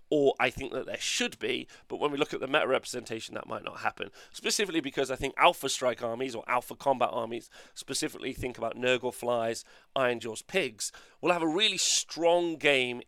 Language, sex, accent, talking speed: English, male, British, 200 wpm